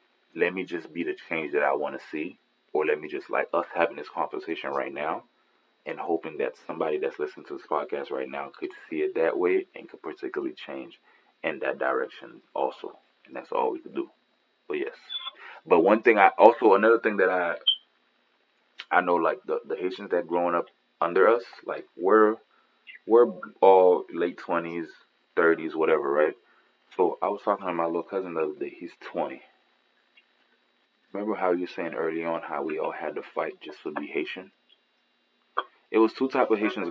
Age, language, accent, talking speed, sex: 20-39, English, American, 190 wpm, male